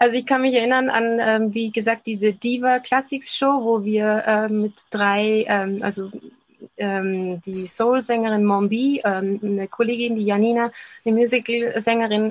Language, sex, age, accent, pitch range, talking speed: German, female, 20-39, German, 210-245 Hz, 150 wpm